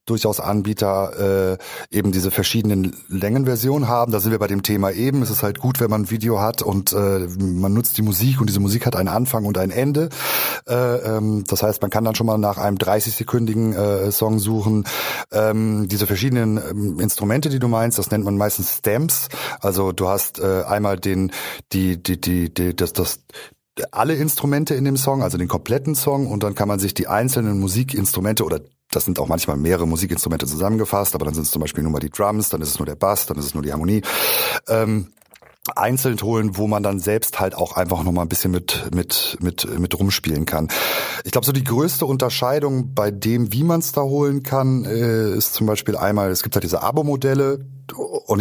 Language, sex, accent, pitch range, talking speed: German, male, German, 95-115 Hz, 210 wpm